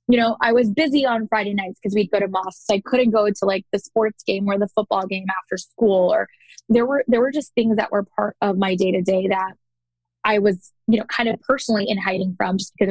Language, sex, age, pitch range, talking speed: English, female, 10-29, 185-215 Hz, 240 wpm